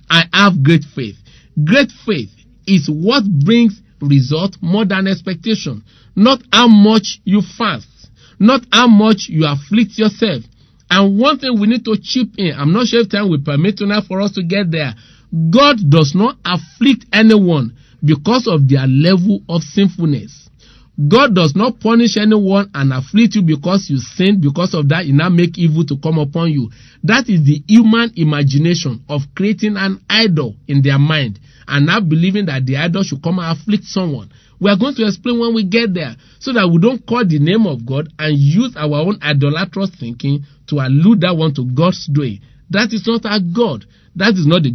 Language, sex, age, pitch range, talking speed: English, male, 50-69, 145-215 Hz, 190 wpm